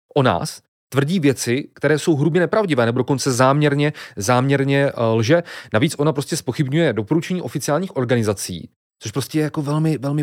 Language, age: Czech, 30-49